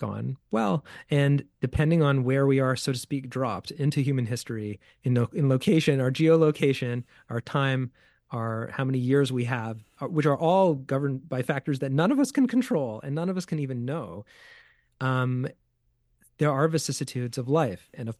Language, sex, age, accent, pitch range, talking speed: English, male, 30-49, American, 120-150 Hz, 180 wpm